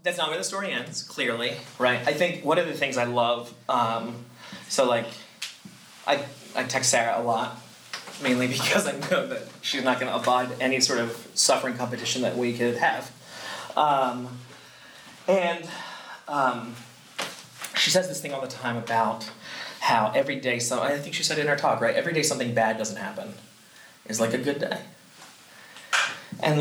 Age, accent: 30-49, American